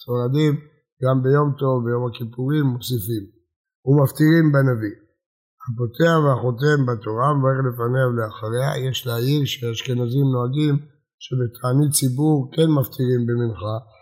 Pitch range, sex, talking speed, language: 120-145 Hz, male, 105 wpm, Hebrew